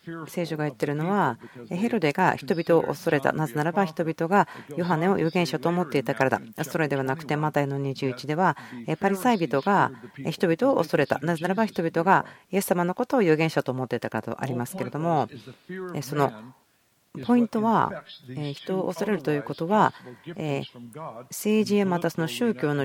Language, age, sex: Japanese, 40-59, female